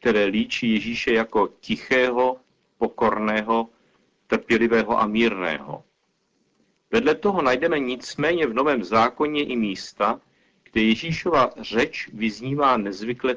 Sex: male